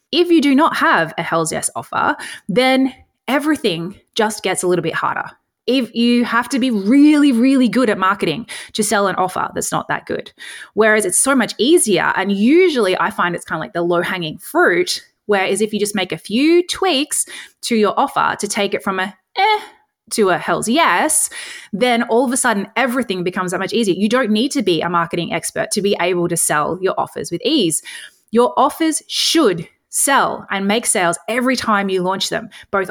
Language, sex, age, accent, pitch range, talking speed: English, female, 20-39, Australian, 190-275 Hz, 210 wpm